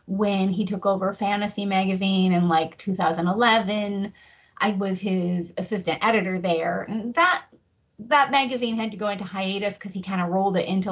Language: English